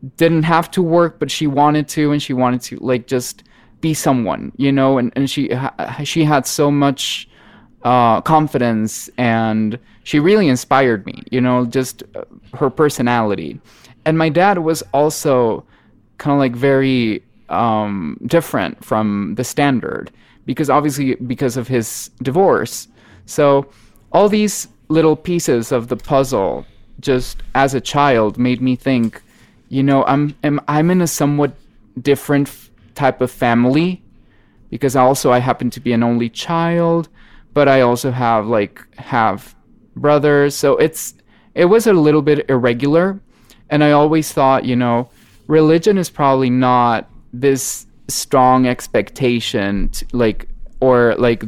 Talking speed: 150 wpm